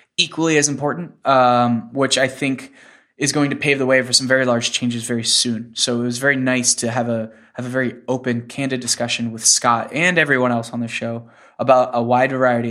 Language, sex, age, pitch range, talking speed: English, male, 10-29, 120-140 Hz, 215 wpm